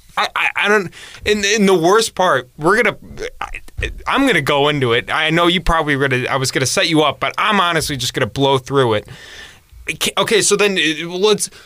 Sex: male